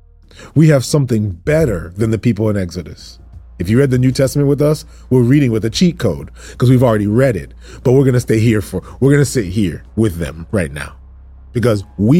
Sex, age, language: male, 30-49, English